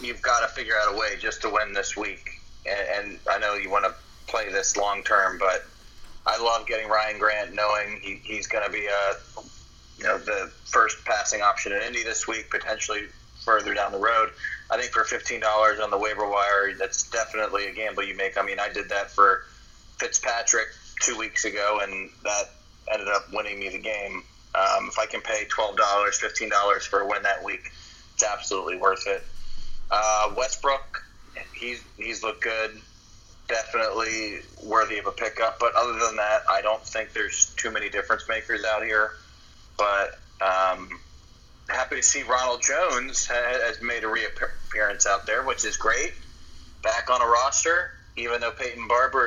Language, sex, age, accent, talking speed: English, male, 20-39, American, 180 wpm